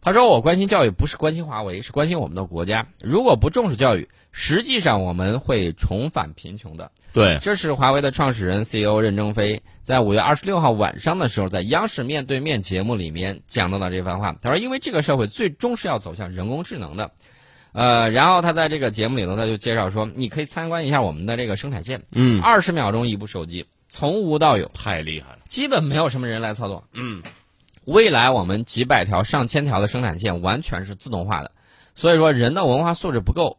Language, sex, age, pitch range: Chinese, male, 20-39, 100-145 Hz